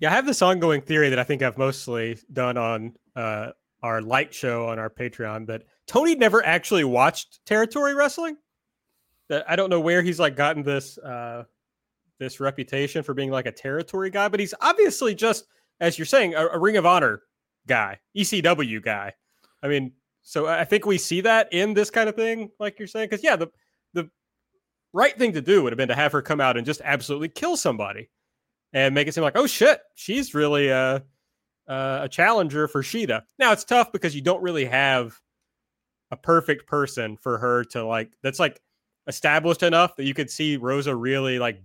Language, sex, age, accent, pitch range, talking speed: English, male, 30-49, American, 125-185 Hz, 195 wpm